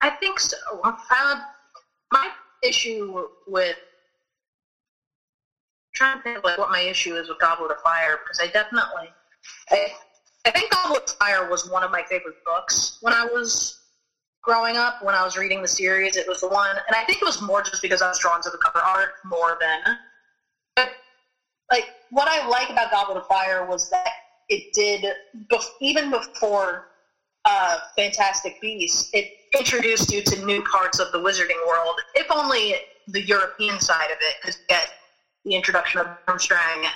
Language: English